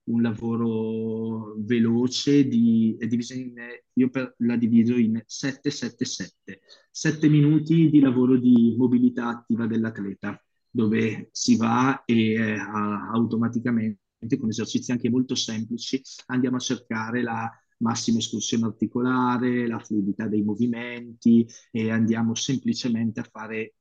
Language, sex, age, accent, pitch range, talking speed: Italian, male, 20-39, native, 110-130 Hz, 115 wpm